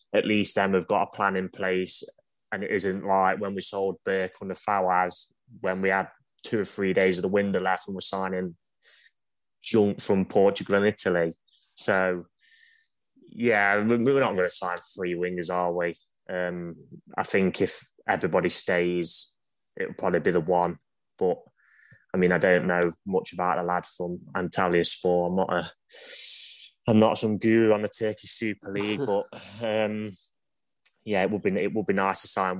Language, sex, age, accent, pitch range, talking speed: English, male, 20-39, British, 90-100 Hz, 180 wpm